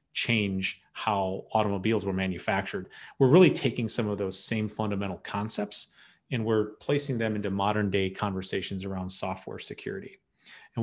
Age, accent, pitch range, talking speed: 30-49, American, 100-125 Hz, 145 wpm